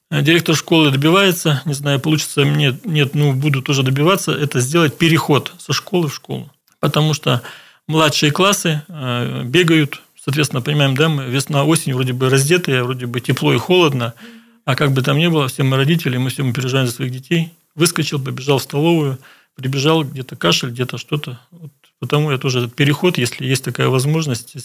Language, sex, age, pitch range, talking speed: Russian, male, 40-59, 135-160 Hz, 170 wpm